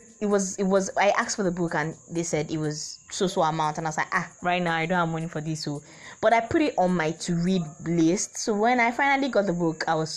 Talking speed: 290 wpm